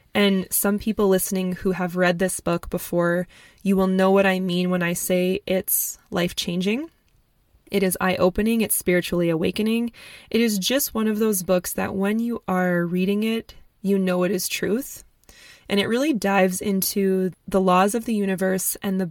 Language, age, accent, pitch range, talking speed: English, 20-39, American, 185-215 Hz, 185 wpm